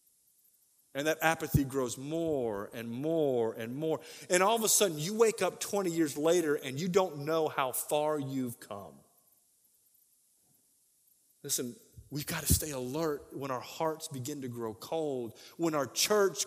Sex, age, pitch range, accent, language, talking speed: male, 30-49, 135-175 Hz, American, English, 160 wpm